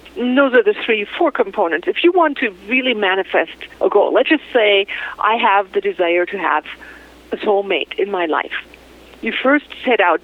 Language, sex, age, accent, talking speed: English, female, 50-69, American, 190 wpm